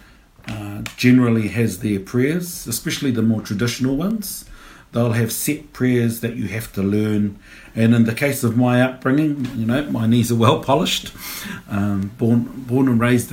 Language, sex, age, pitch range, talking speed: English, male, 50-69, 95-120 Hz, 170 wpm